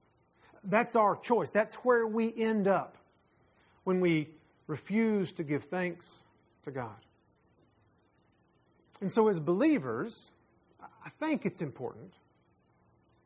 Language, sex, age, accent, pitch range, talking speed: English, male, 40-59, American, 155-215 Hz, 110 wpm